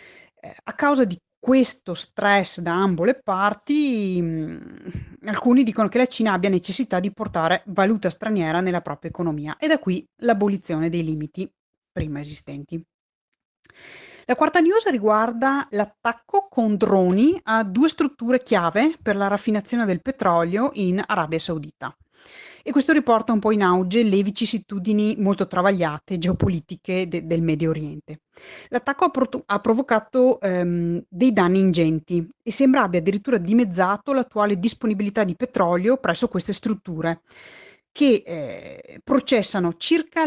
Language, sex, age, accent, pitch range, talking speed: Italian, female, 30-49, native, 170-235 Hz, 135 wpm